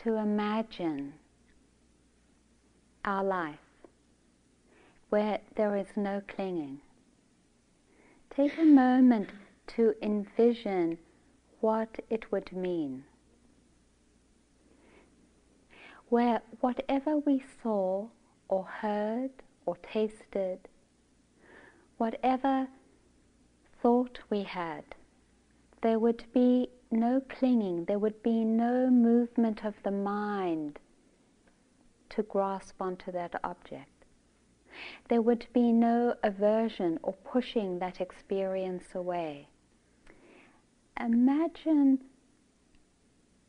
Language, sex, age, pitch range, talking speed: English, female, 40-59, 190-240 Hz, 80 wpm